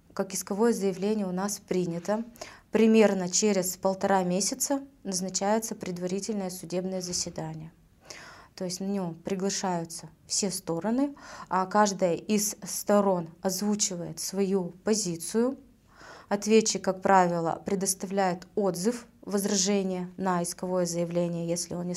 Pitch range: 180-210 Hz